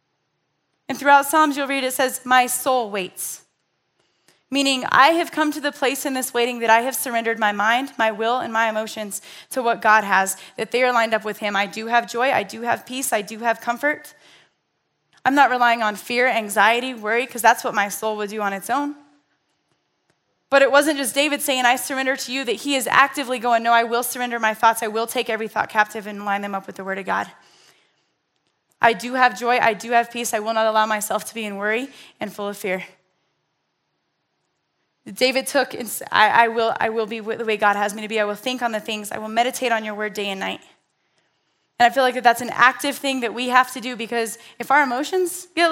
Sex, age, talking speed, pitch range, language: female, 10-29, 235 wpm, 215-265 Hz, English